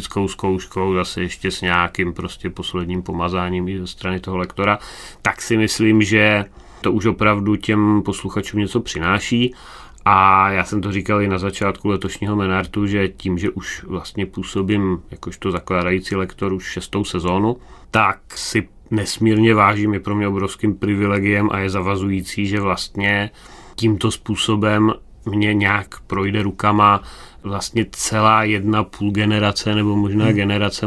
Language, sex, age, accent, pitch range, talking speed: Czech, male, 30-49, native, 95-105 Hz, 145 wpm